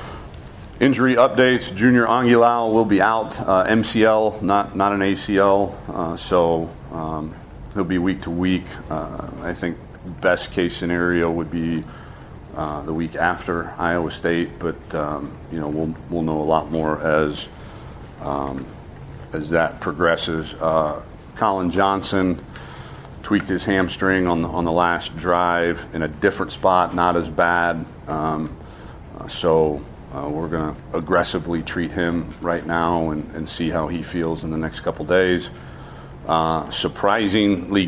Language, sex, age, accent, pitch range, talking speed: English, male, 50-69, American, 80-95 Hz, 145 wpm